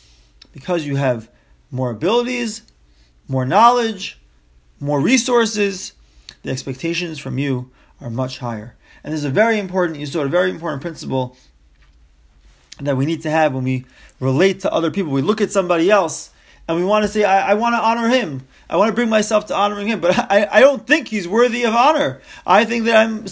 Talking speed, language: 195 wpm, English